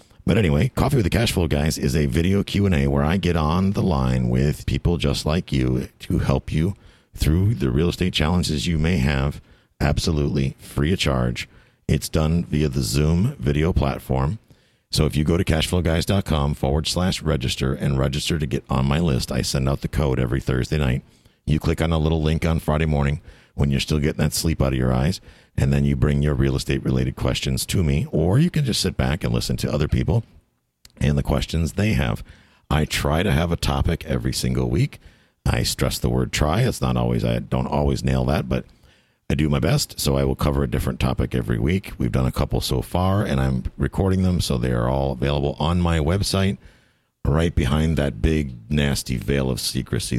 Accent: American